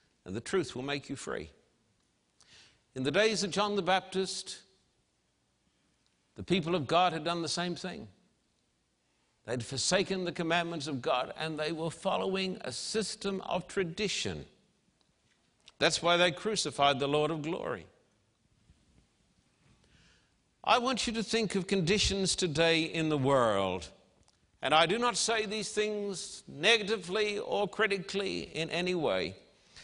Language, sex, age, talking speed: English, male, 60-79, 140 wpm